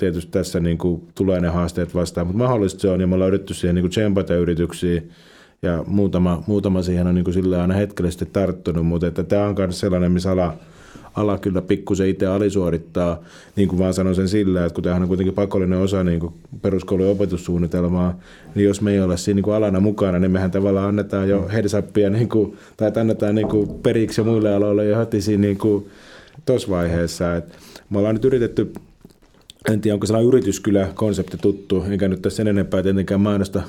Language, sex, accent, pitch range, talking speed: Finnish, male, native, 90-100 Hz, 185 wpm